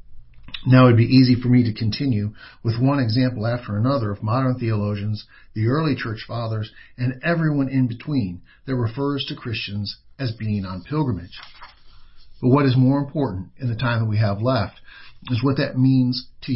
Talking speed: 180 wpm